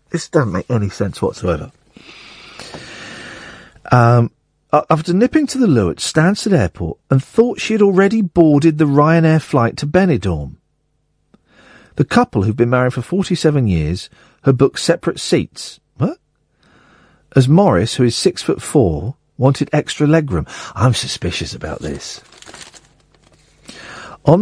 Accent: British